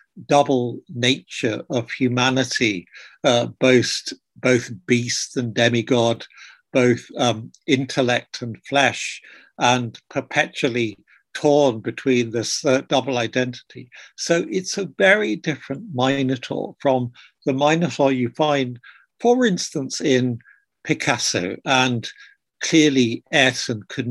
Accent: British